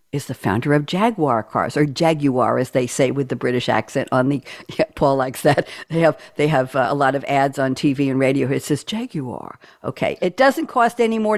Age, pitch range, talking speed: 60-79, 150-180 Hz, 225 wpm